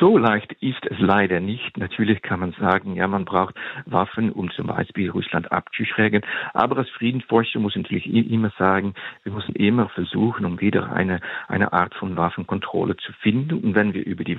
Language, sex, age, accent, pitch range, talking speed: German, male, 50-69, German, 95-115 Hz, 185 wpm